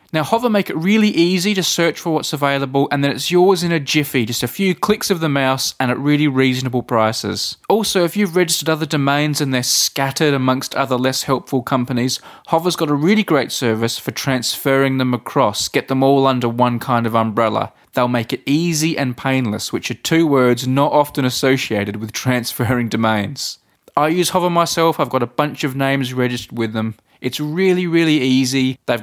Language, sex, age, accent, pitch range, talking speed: English, male, 20-39, Australian, 120-155 Hz, 200 wpm